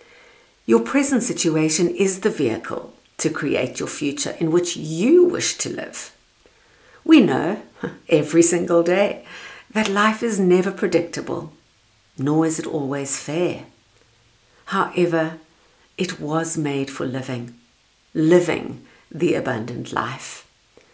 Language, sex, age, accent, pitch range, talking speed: English, female, 50-69, British, 165-250 Hz, 120 wpm